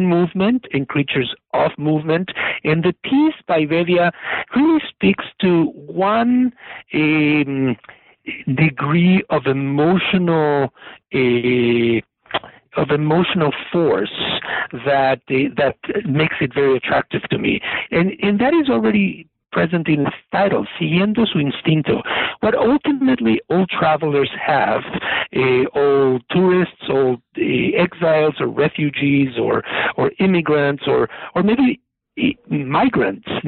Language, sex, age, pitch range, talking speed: English, male, 60-79, 140-195 Hz, 115 wpm